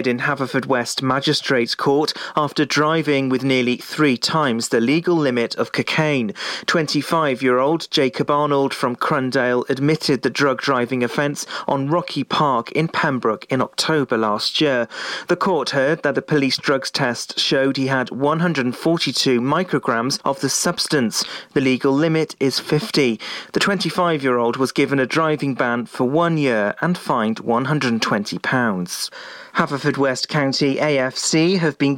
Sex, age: male, 40-59